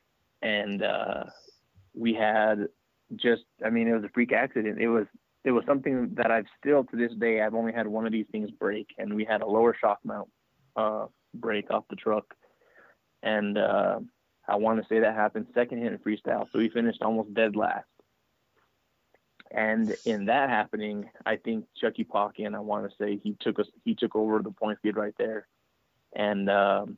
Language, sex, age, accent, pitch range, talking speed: English, male, 20-39, American, 105-115 Hz, 190 wpm